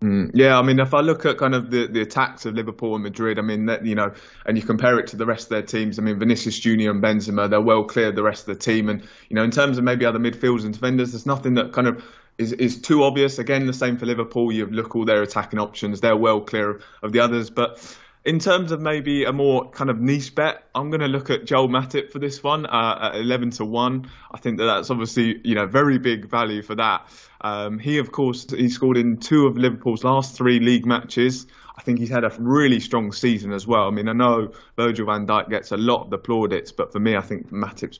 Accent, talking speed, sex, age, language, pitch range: British, 260 wpm, male, 20-39, English, 110-130 Hz